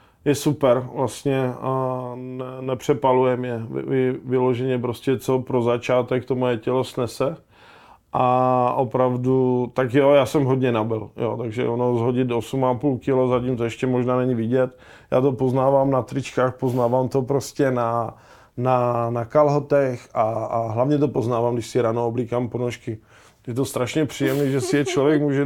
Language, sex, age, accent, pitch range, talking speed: Czech, male, 20-39, native, 120-135 Hz, 160 wpm